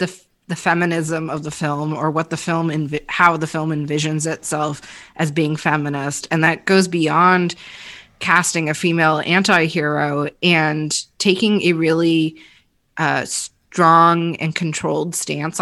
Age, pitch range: 30-49, 155-180 Hz